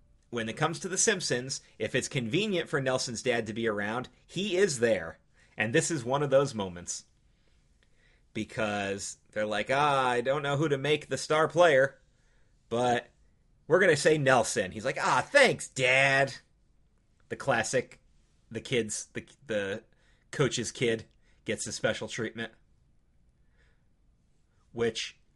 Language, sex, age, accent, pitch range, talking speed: English, male, 30-49, American, 115-150 Hz, 150 wpm